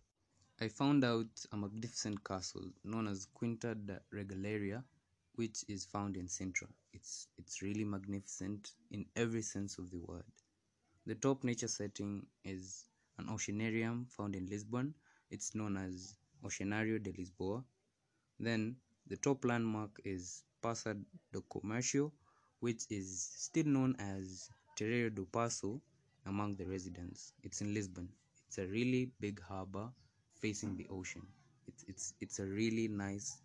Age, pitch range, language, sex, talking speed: 20-39, 95-115 Hz, English, male, 140 wpm